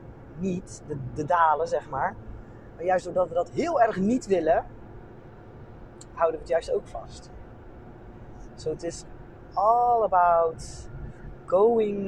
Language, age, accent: Dutch, 30-49, Dutch